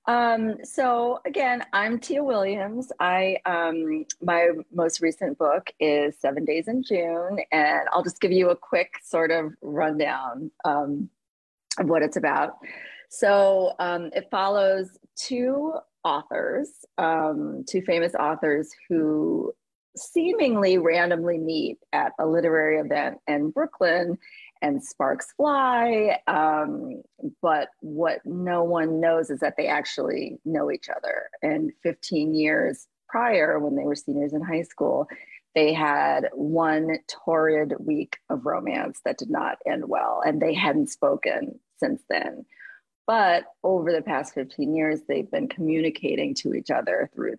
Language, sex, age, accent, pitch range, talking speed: English, female, 30-49, American, 155-245 Hz, 140 wpm